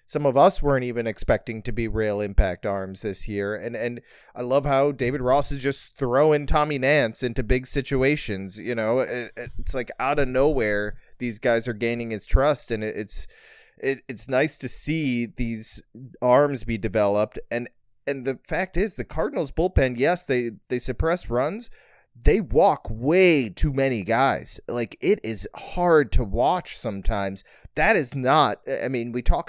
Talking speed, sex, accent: 175 wpm, male, American